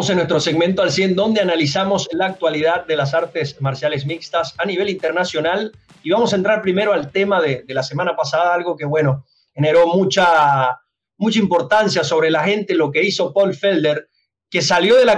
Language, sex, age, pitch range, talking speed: Spanish, male, 30-49, 170-210 Hz, 190 wpm